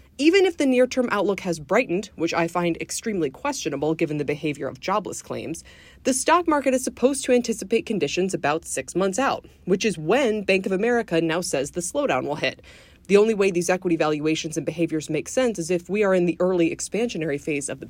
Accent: American